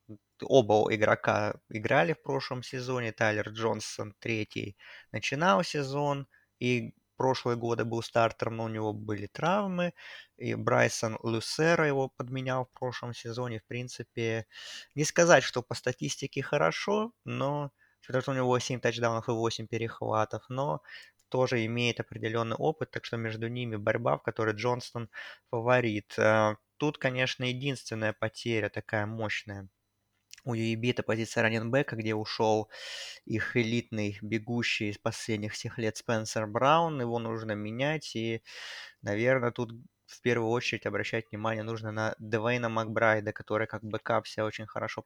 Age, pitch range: 20-39, 110-125 Hz